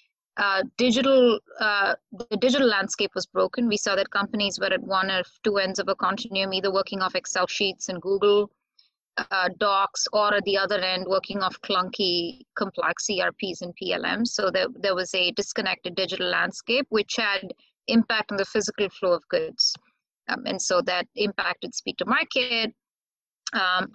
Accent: Indian